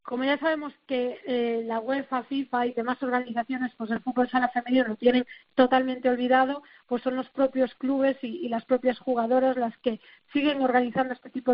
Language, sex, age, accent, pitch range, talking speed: Spanish, female, 40-59, Spanish, 245-270 Hz, 195 wpm